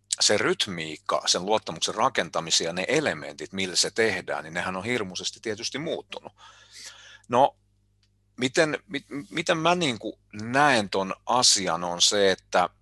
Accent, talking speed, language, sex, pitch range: native, 130 wpm, Finnish, male, 95-110 Hz